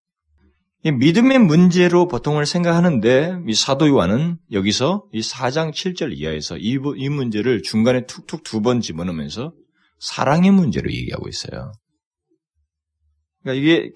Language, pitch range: Korean, 120-185 Hz